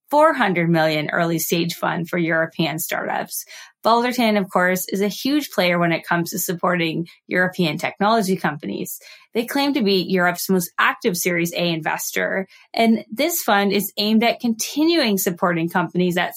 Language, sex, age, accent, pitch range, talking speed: English, female, 20-39, American, 175-225 Hz, 150 wpm